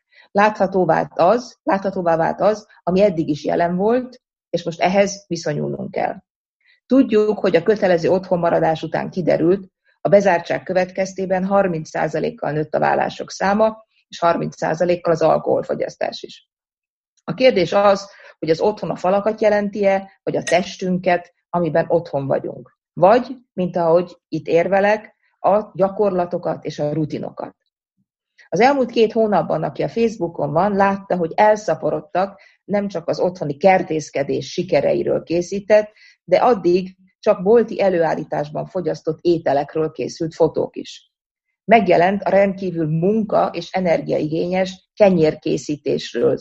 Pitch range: 165-200 Hz